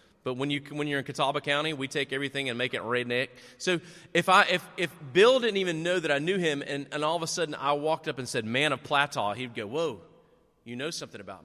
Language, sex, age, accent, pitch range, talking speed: English, male, 30-49, American, 125-160 Hz, 255 wpm